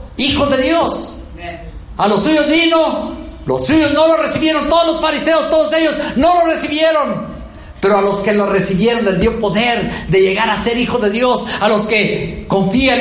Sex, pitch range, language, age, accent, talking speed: male, 210-295 Hz, Spanish, 50-69, Mexican, 180 wpm